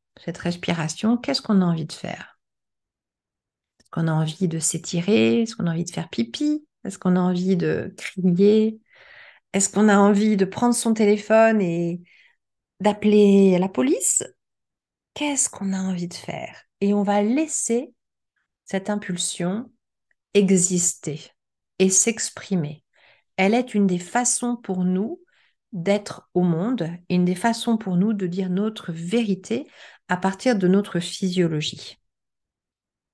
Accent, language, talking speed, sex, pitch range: French, French, 140 wpm, female, 180-225 Hz